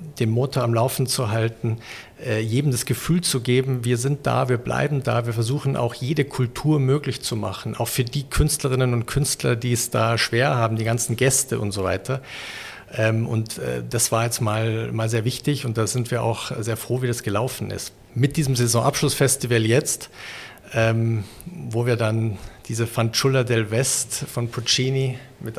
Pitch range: 115-130 Hz